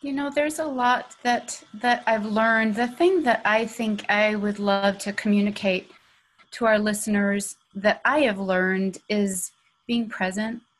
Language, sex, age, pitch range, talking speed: English, female, 30-49, 195-240 Hz, 160 wpm